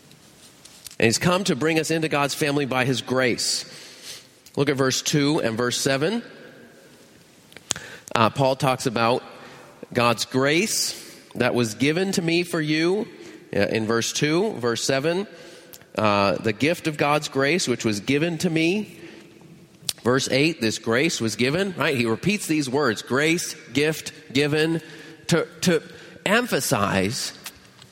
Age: 40-59